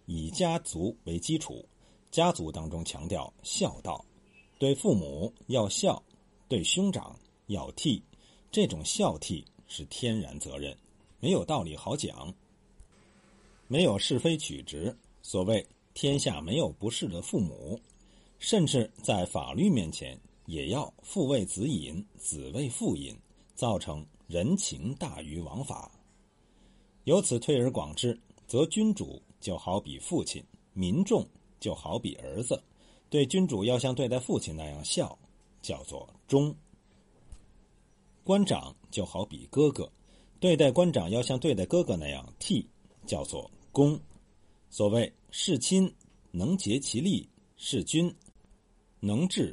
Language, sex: Chinese, male